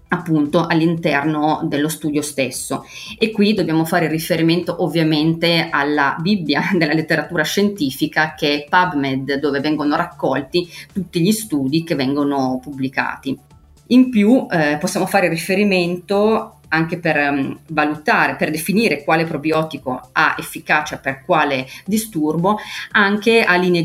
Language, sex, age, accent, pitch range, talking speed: Italian, female, 30-49, native, 150-180 Hz, 125 wpm